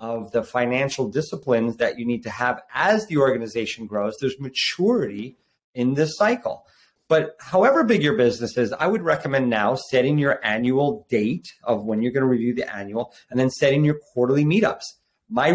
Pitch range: 110-145 Hz